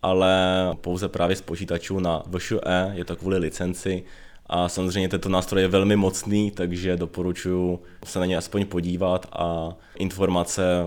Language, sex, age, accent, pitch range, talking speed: Czech, male, 20-39, native, 85-100 Hz, 155 wpm